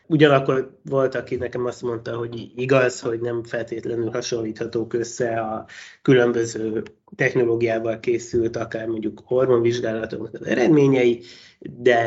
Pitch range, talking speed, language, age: 115-130 Hz, 115 wpm, Hungarian, 20-39